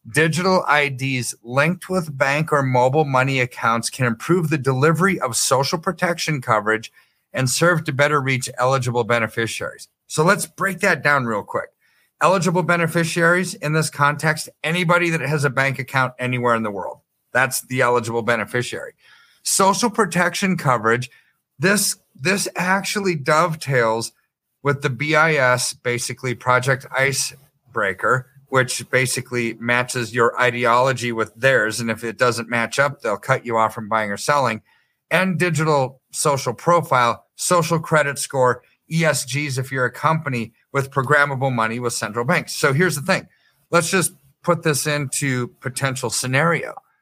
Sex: male